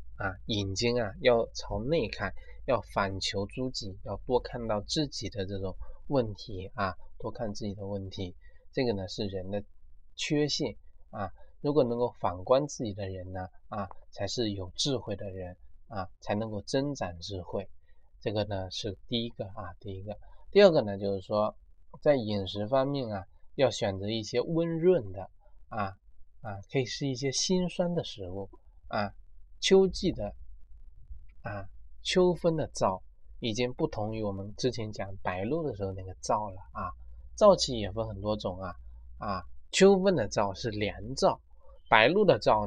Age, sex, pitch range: 20-39, male, 95-130 Hz